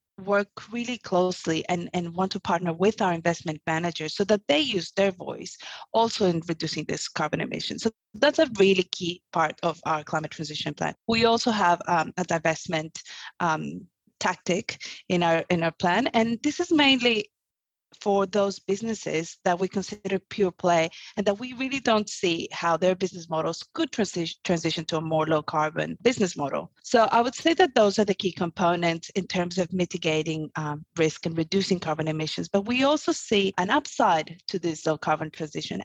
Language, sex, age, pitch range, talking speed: English, female, 30-49, 160-200 Hz, 185 wpm